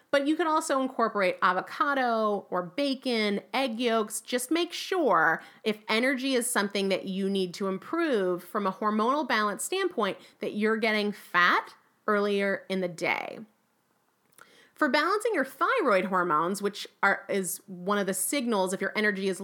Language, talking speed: English, 155 wpm